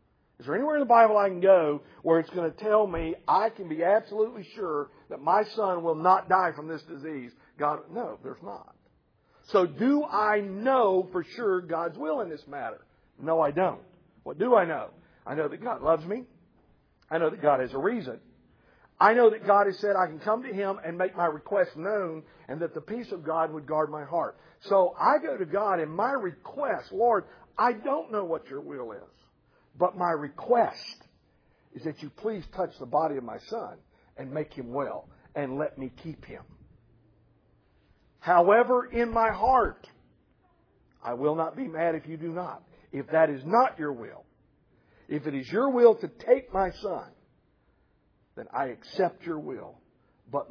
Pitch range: 155-210 Hz